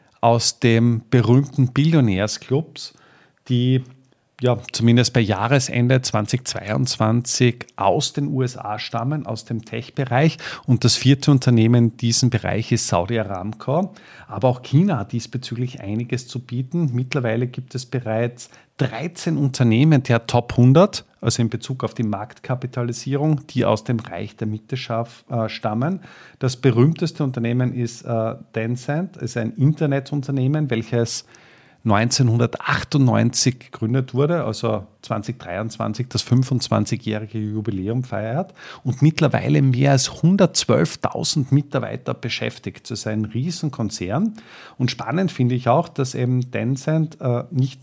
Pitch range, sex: 115-140 Hz, male